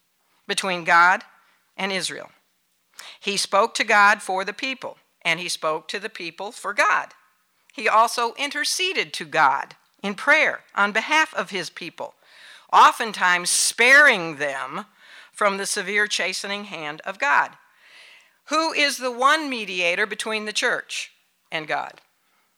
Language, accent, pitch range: English, American, 185-270 Hz